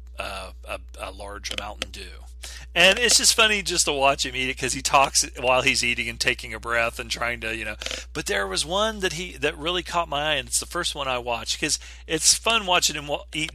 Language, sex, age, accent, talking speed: English, male, 40-59, American, 245 wpm